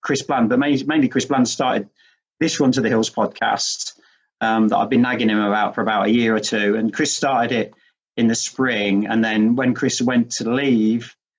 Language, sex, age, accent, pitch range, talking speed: English, male, 40-59, British, 115-155 Hz, 210 wpm